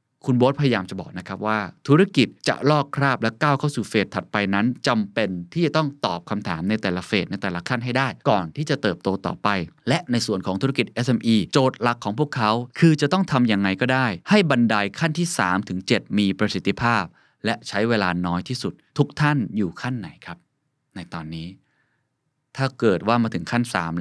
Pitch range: 95-130 Hz